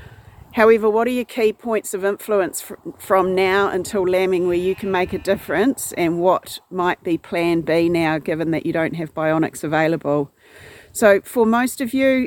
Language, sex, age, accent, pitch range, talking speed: English, female, 40-59, Australian, 175-215 Hz, 180 wpm